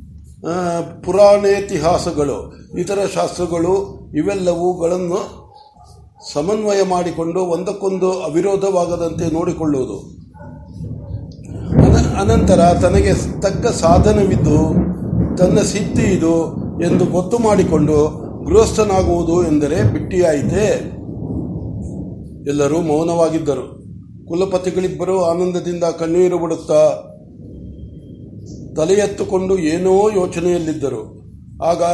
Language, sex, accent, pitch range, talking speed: Kannada, male, native, 155-190 Hz, 60 wpm